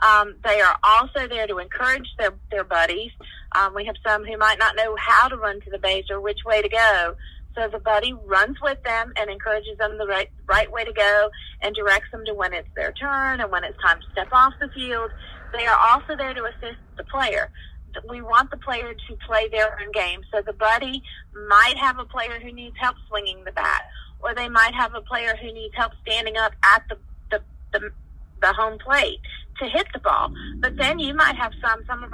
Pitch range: 205-255 Hz